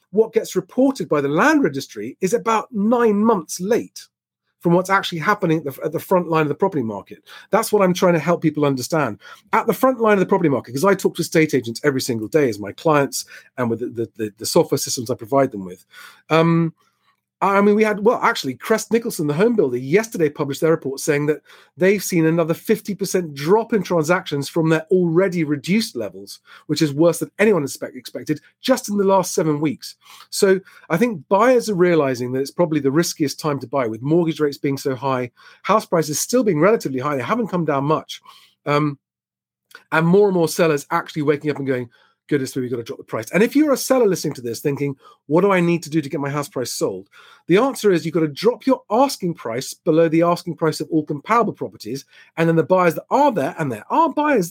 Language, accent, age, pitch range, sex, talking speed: English, British, 40-59, 145-195 Hz, male, 225 wpm